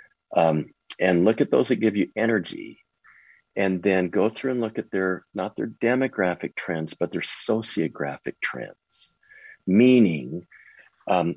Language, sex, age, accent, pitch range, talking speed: English, male, 40-59, American, 85-115 Hz, 145 wpm